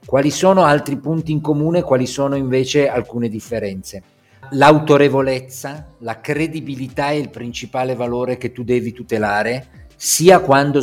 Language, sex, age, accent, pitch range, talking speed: Italian, male, 50-69, native, 120-155 Hz, 140 wpm